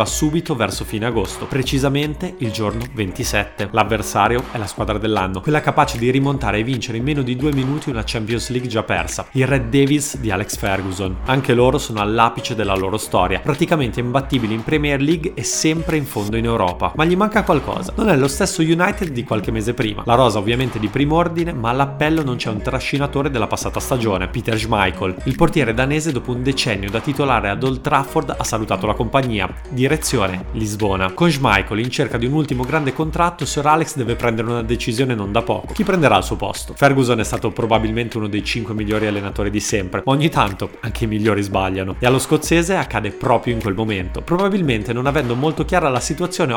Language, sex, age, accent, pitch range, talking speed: Italian, male, 30-49, native, 110-145 Hz, 200 wpm